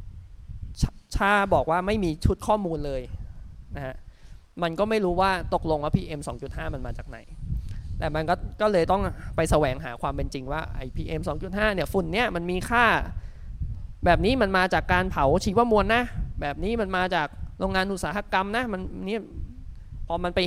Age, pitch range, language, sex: 20-39, 130-185 Hz, Thai, male